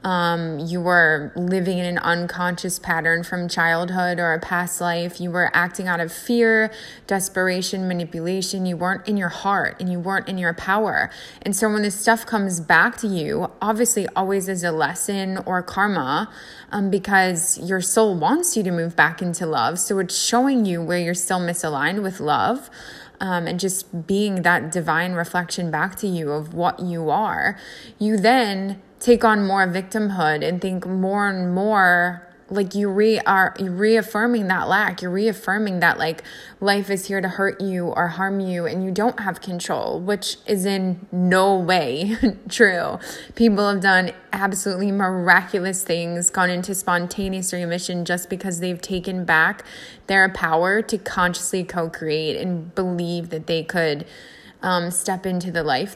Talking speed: 165 wpm